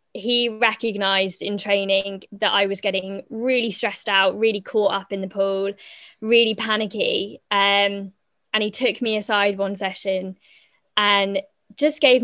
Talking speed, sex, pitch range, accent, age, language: 145 wpm, female, 195-225 Hz, British, 10-29, English